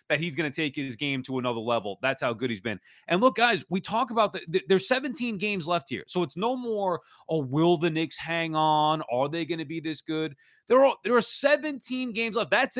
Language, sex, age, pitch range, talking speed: English, male, 30-49, 165-240 Hz, 250 wpm